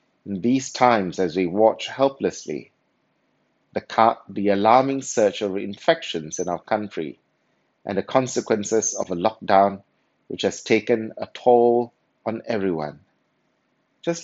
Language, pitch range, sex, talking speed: English, 95-120 Hz, male, 130 wpm